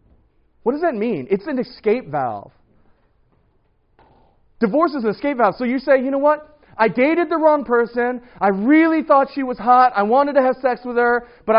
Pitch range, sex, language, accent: 175-265 Hz, male, English, American